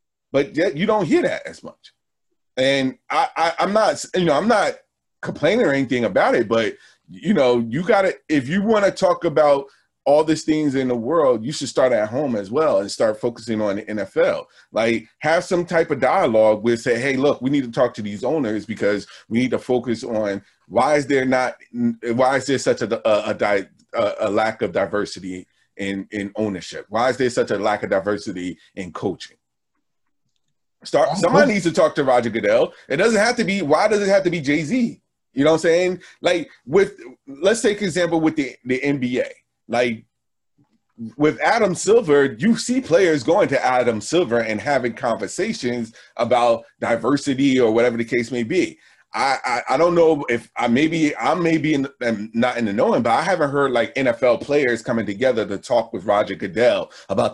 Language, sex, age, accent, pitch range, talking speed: English, male, 30-49, American, 115-165 Hz, 200 wpm